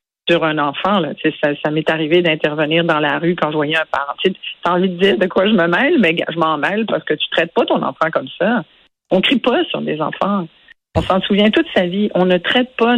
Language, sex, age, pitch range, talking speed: French, female, 50-69, 170-210 Hz, 280 wpm